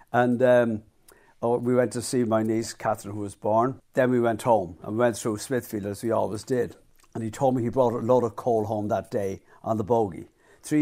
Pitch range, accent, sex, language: 110-125 Hz, British, male, English